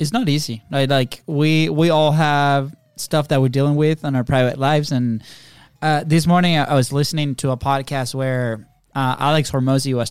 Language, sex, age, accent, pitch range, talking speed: English, male, 10-29, American, 130-155 Hz, 195 wpm